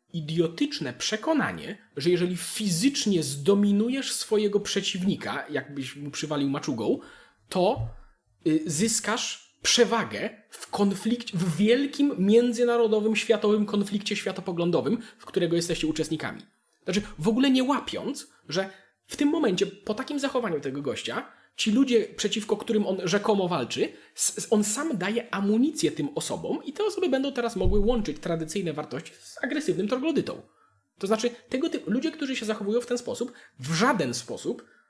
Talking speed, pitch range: 140 wpm, 170-235 Hz